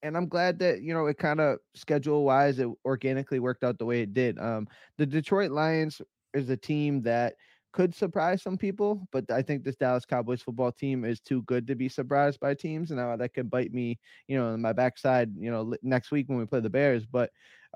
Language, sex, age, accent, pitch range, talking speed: English, male, 20-39, American, 120-145 Hz, 225 wpm